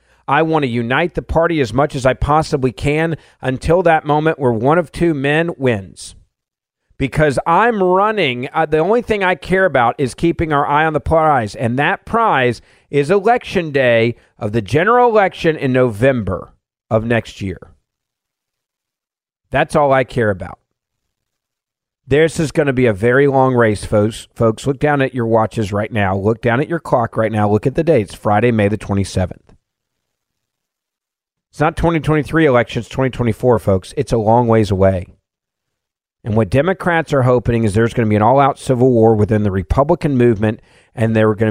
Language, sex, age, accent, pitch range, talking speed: English, male, 40-59, American, 110-155 Hz, 180 wpm